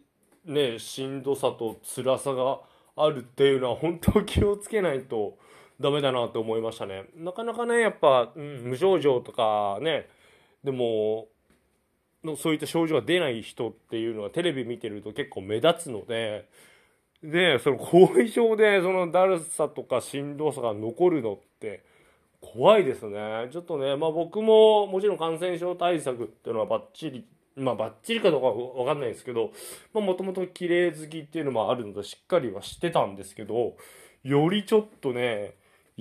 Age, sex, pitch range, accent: 20-39, male, 125-190 Hz, native